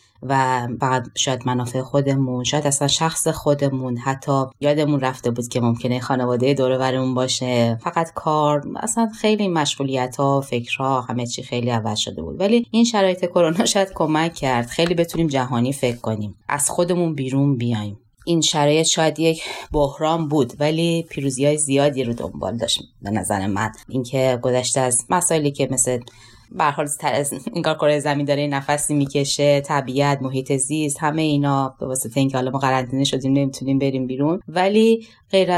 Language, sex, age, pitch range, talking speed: Persian, female, 20-39, 125-155 Hz, 160 wpm